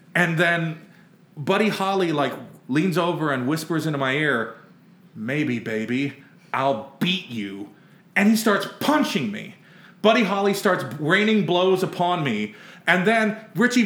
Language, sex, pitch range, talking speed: English, male, 185-240 Hz, 140 wpm